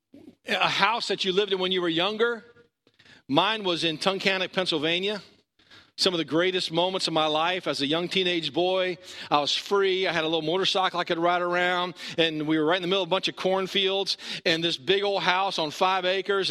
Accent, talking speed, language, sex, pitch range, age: American, 220 wpm, English, male, 165-195 Hz, 40-59